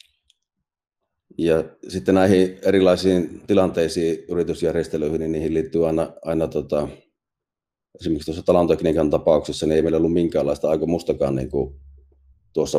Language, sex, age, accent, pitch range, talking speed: Finnish, male, 30-49, native, 70-90 Hz, 115 wpm